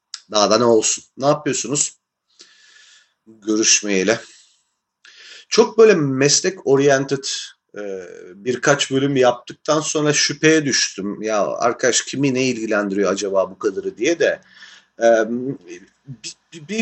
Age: 40-59